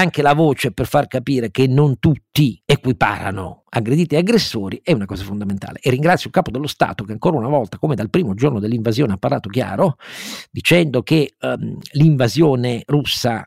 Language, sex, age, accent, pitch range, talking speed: Italian, male, 50-69, native, 110-145 Hz, 175 wpm